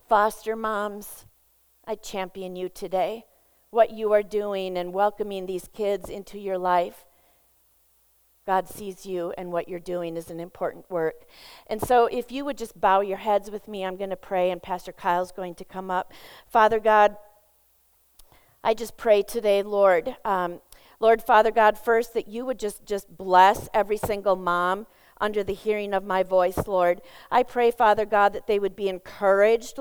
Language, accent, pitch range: English, American, 195-230 Hz